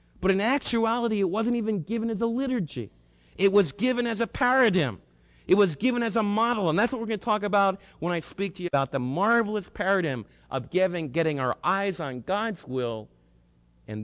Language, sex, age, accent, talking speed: English, male, 50-69, American, 200 wpm